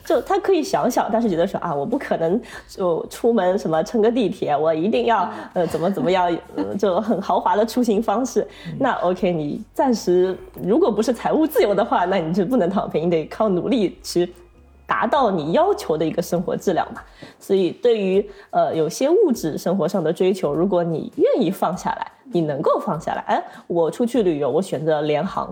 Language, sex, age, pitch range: Chinese, female, 20-39, 170-235 Hz